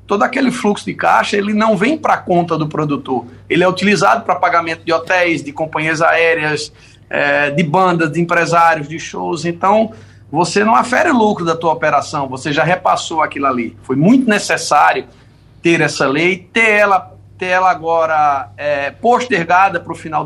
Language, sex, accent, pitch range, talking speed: Portuguese, male, Brazilian, 155-225 Hz, 165 wpm